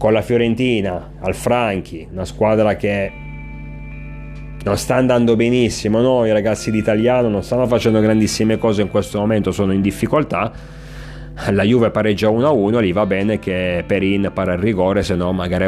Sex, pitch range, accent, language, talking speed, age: male, 95-120 Hz, native, Italian, 160 wpm, 30-49